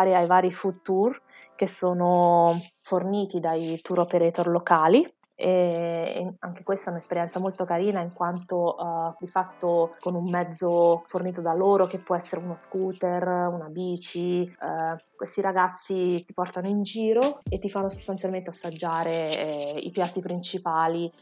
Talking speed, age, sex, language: 145 wpm, 20-39, female, Italian